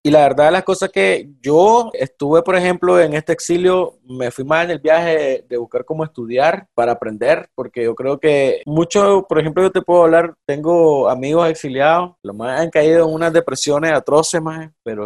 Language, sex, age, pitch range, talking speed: Spanish, male, 30-49, 130-170 Hz, 195 wpm